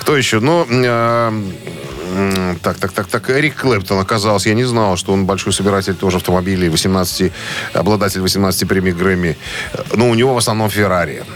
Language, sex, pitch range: Russian, male, 95-120 Hz